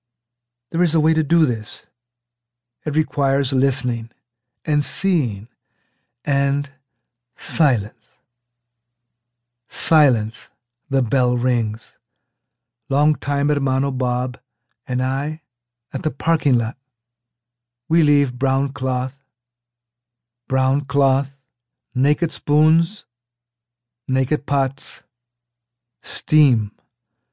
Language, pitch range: English, 120-140 Hz